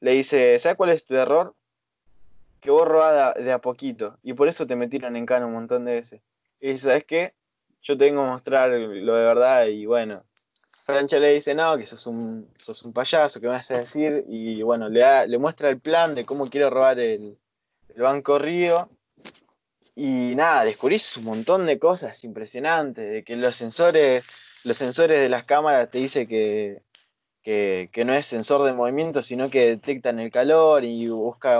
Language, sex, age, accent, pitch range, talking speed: Spanish, male, 20-39, Argentinian, 120-155 Hz, 195 wpm